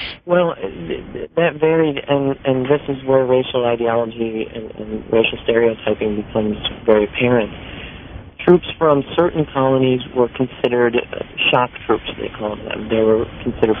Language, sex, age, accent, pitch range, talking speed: English, male, 40-59, American, 110-130 Hz, 135 wpm